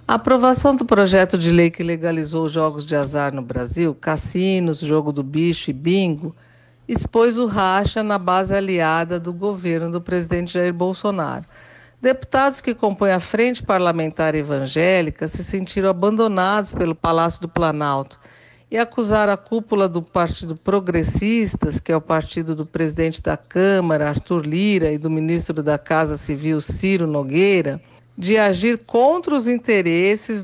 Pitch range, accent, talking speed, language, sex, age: 160-200 Hz, Brazilian, 150 wpm, Portuguese, female, 50-69